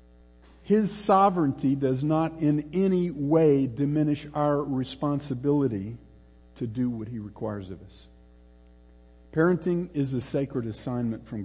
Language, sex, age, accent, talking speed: English, male, 50-69, American, 120 wpm